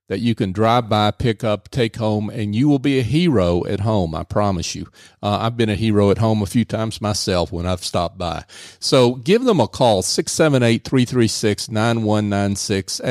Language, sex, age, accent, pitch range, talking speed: English, male, 40-59, American, 100-120 Hz, 190 wpm